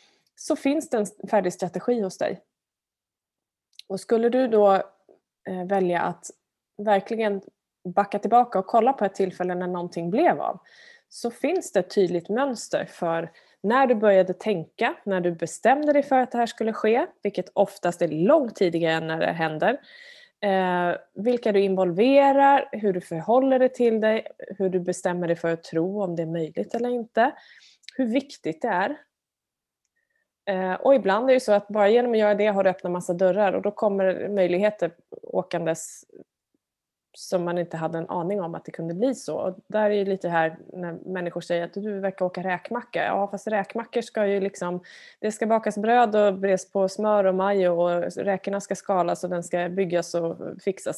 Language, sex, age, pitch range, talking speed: Swedish, female, 20-39, 180-230 Hz, 180 wpm